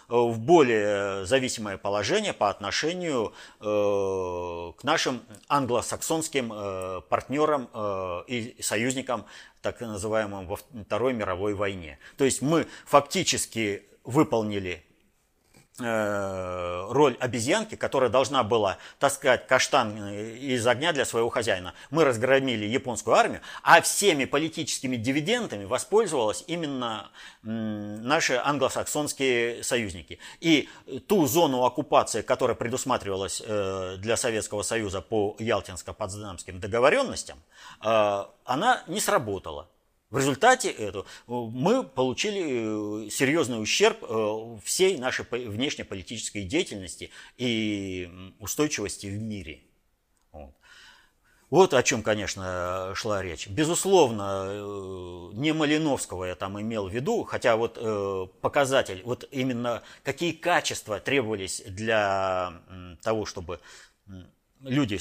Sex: male